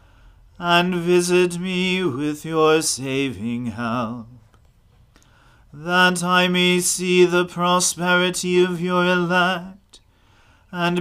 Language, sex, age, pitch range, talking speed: English, male, 40-59, 125-180 Hz, 95 wpm